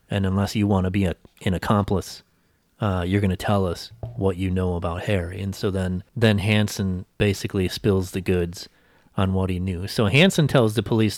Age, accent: 30-49, American